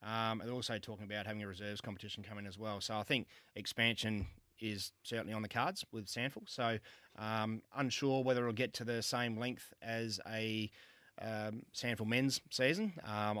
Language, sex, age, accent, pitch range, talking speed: English, male, 30-49, Australian, 100-115 Hz, 180 wpm